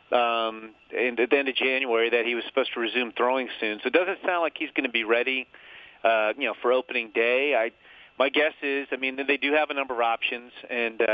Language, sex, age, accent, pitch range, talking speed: English, male, 30-49, American, 120-145 Hz, 240 wpm